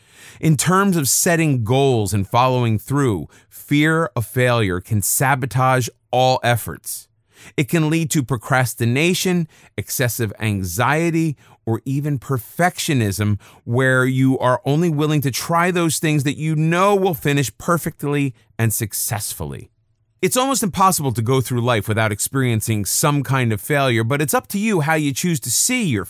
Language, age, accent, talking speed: English, 30-49, American, 150 wpm